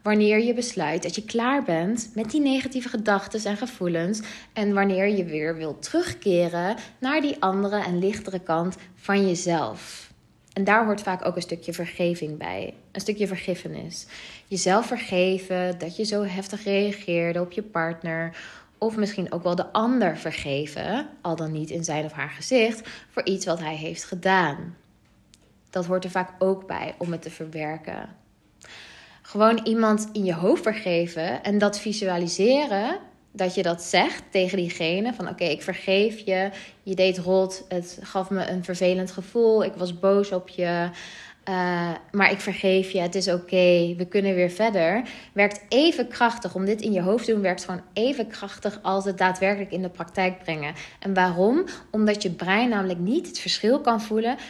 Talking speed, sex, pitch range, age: 175 wpm, female, 175-215 Hz, 20-39